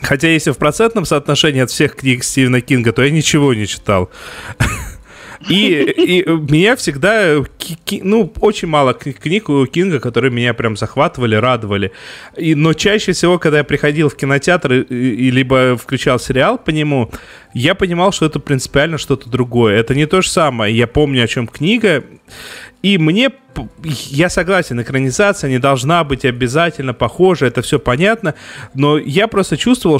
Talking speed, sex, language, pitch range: 150 wpm, male, Russian, 125-165 Hz